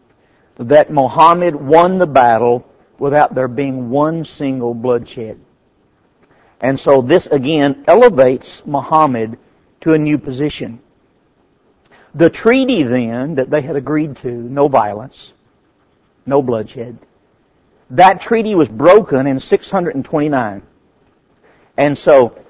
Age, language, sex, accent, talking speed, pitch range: 50-69, English, male, American, 110 wpm, 135-185 Hz